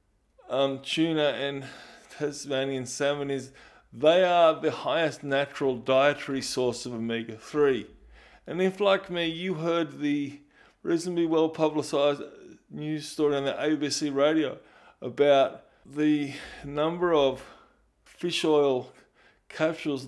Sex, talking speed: male, 110 wpm